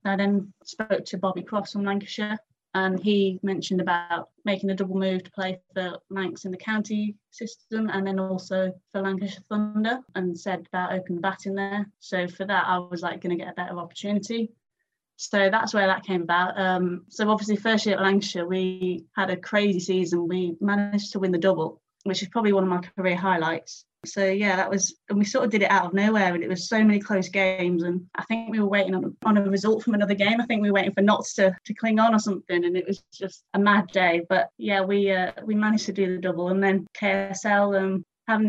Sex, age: female, 20-39